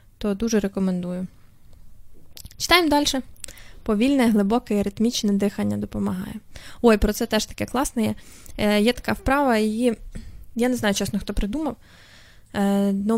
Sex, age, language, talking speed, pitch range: female, 20-39, Ukrainian, 130 wpm, 200-235 Hz